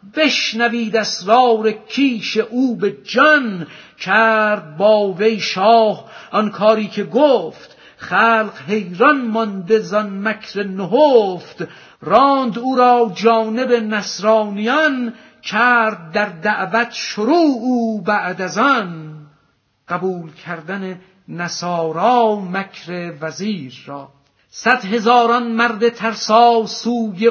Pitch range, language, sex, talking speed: 195-230 Hz, Persian, female, 95 wpm